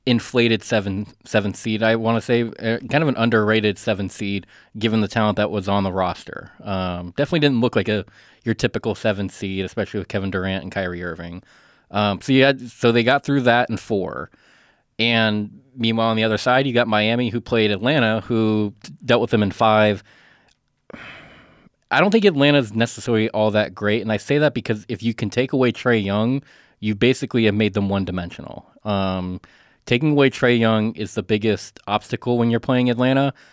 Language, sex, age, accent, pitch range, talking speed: English, male, 20-39, American, 105-120 Hz, 195 wpm